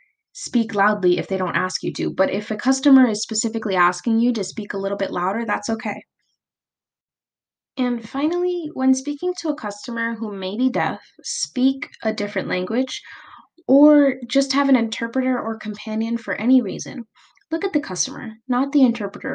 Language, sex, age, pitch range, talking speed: English, female, 10-29, 200-265 Hz, 175 wpm